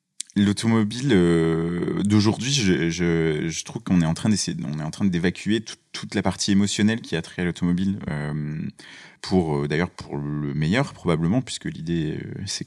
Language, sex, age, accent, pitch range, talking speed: French, male, 30-49, French, 85-100 Hz, 185 wpm